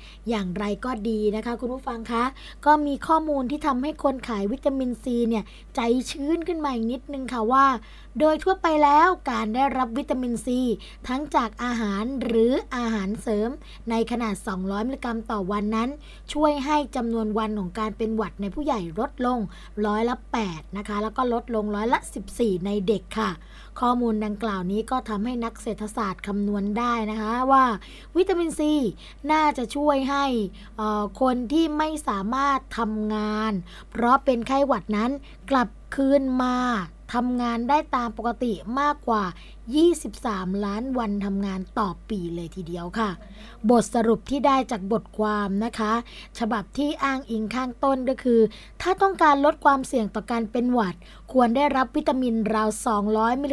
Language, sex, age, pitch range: Thai, female, 20-39, 215-270 Hz